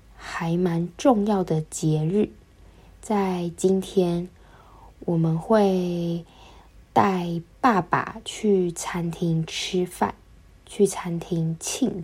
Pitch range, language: 165-200 Hz, Chinese